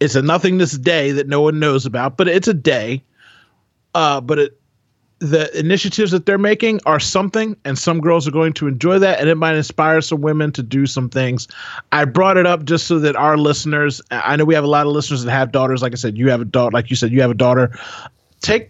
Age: 30-49